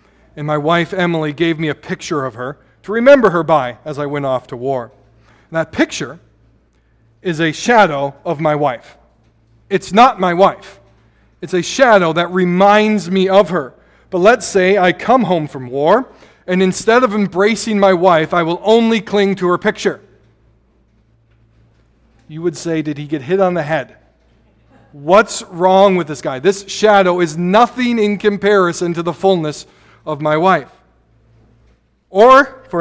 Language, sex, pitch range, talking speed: English, male, 145-195 Hz, 165 wpm